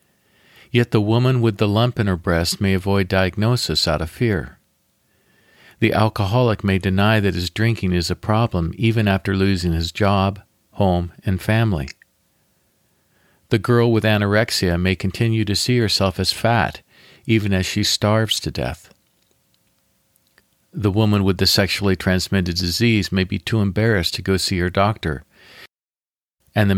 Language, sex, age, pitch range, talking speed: English, male, 50-69, 90-110 Hz, 150 wpm